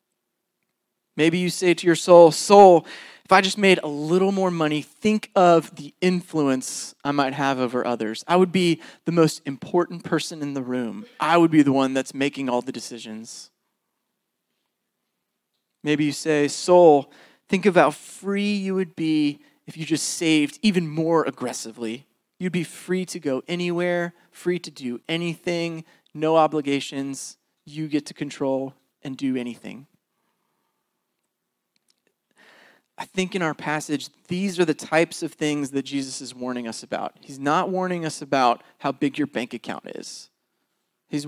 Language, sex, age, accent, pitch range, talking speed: English, male, 30-49, American, 140-175 Hz, 160 wpm